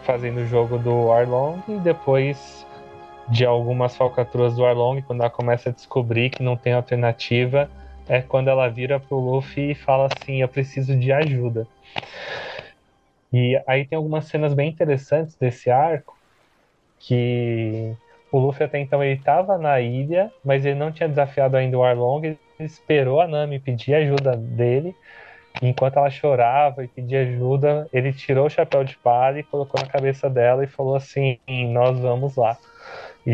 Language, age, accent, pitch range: Portuguese, 20-39, Brazilian, 120-140 Hz